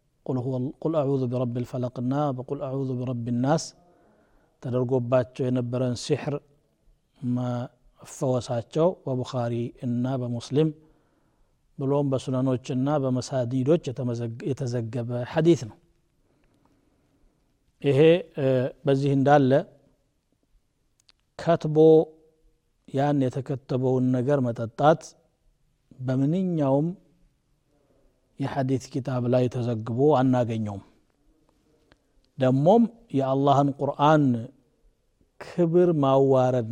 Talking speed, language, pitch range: 80 wpm, Amharic, 125-150 Hz